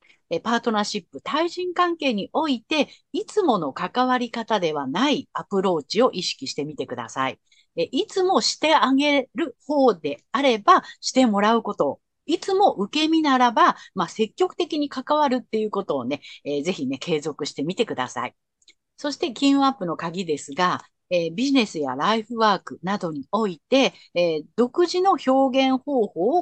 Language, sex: Japanese, female